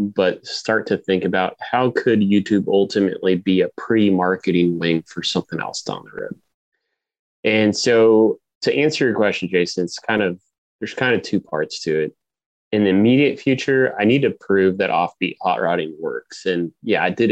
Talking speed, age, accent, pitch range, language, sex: 185 wpm, 20-39, American, 95-115 Hz, English, male